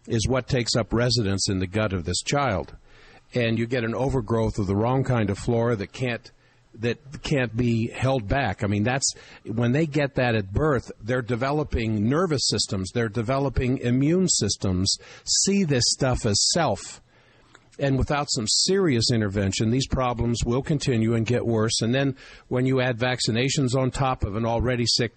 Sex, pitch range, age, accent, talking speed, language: male, 105-130 Hz, 50-69, American, 180 wpm, English